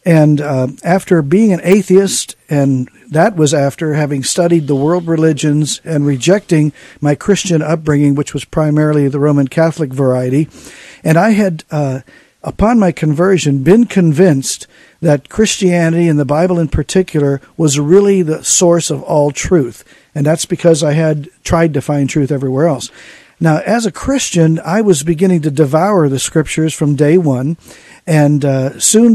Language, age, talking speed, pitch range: English, 50-69, 160 wpm, 145-180 Hz